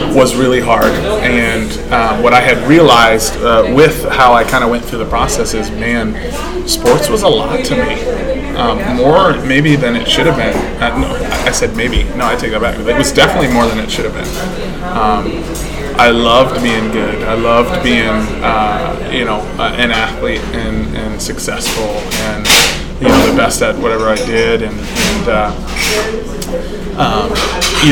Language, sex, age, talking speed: English, male, 20-39, 185 wpm